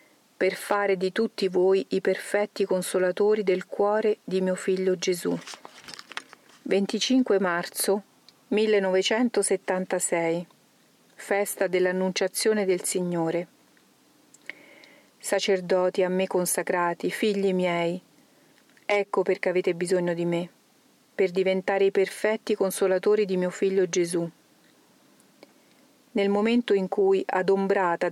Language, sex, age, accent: Italian, female, 40-59, native